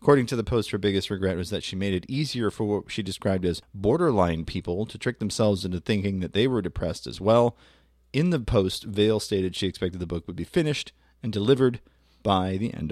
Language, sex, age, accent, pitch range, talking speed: English, male, 30-49, American, 95-135 Hz, 225 wpm